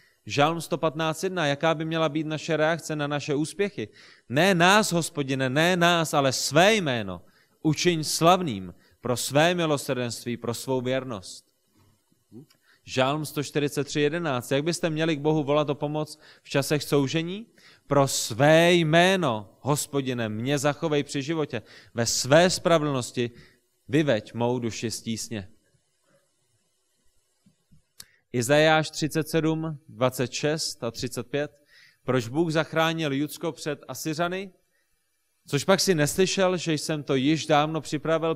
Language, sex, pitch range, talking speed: Czech, male, 130-165 Hz, 120 wpm